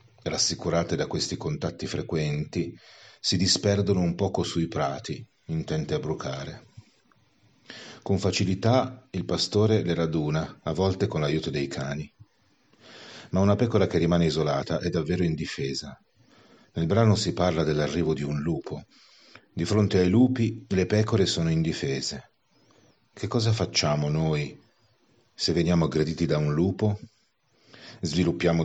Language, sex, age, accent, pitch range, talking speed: Italian, male, 40-59, native, 80-105 Hz, 130 wpm